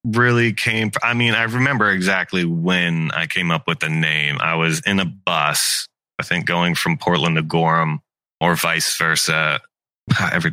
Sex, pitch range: male, 90-115 Hz